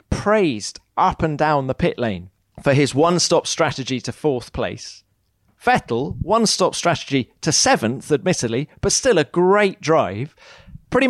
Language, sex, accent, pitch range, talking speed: English, male, British, 125-175 Hz, 140 wpm